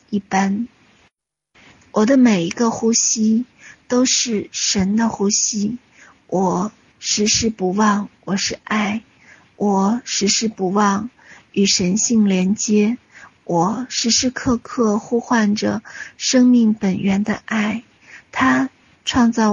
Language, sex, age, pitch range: Chinese, female, 50-69, 200-230 Hz